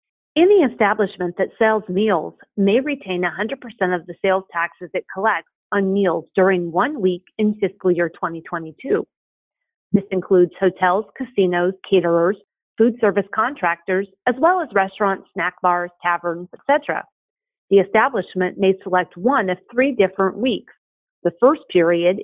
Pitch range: 180-250 Hz